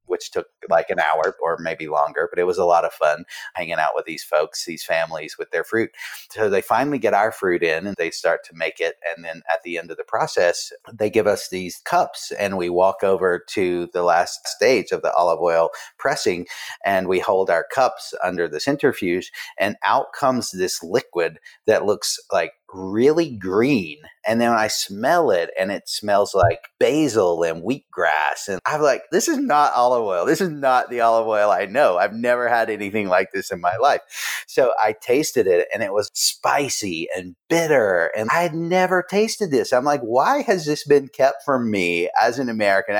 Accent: American